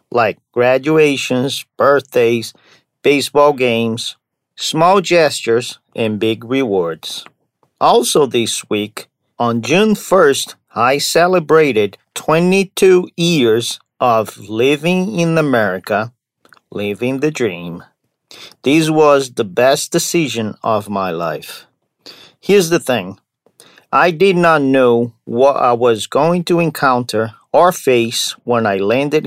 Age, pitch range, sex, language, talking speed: 50-69, 120-160 Hz, male, English, 110 wpm